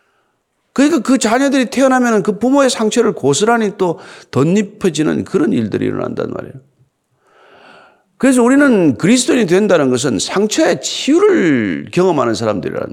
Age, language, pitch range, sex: 50-69, Korean, 195-265 Hz, male